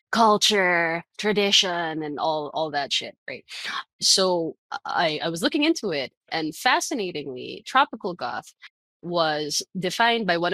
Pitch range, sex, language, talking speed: 155-205 Hz, female, English, 130 wpm